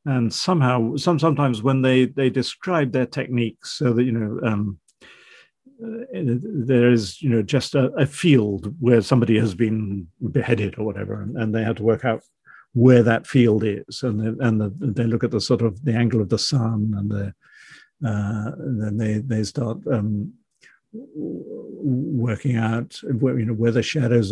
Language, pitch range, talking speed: English, 110-135 Hz, 185 wpm